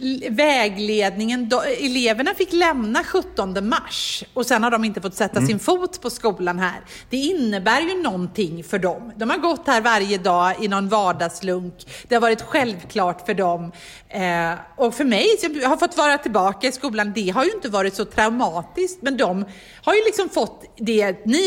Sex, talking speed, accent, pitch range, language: female, 180 wpm, native, 195-270 Hz, Swedish